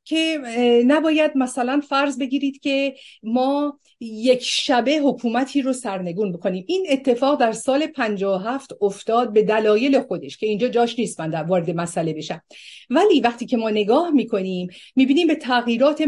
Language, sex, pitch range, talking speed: Persian, female, 210-285 Hz, 150 wpm